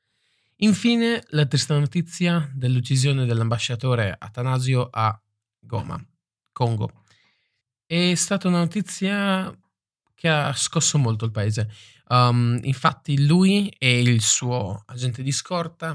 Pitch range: 110-135 Hz